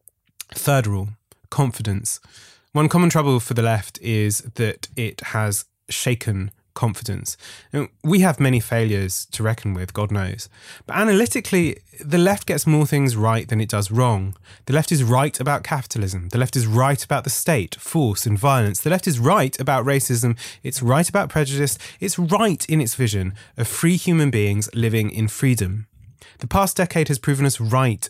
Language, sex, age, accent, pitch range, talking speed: English, male, 20-39, British, 110-145 Hz, 175 wpm